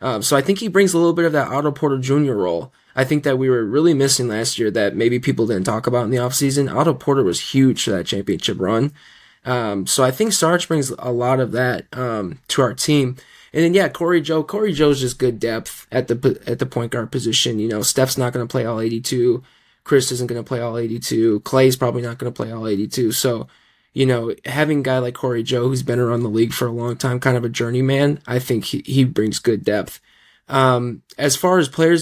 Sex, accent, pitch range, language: male, American, 125-145 Hz, English